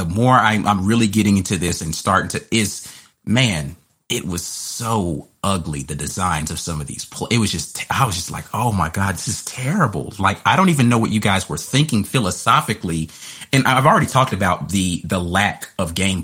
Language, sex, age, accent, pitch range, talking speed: English, male, 30-49, American, 90-130 Hz, 205 wpm